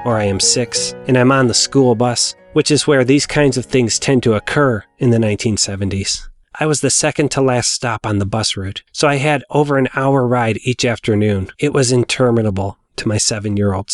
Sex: male